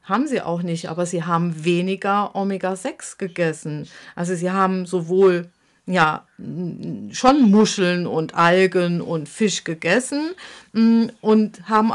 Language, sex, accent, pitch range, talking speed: German, female, German, 185-225 Hz, 120 wpm